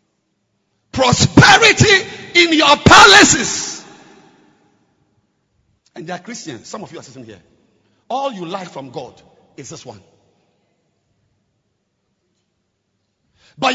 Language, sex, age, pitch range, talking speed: English, male, 50-69, 235-335 Hz, 100 wpm